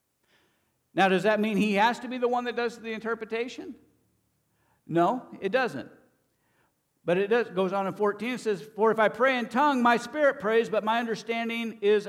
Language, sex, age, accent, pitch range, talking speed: English, male, 60-79, American, 145-225 Hz, 195 wpm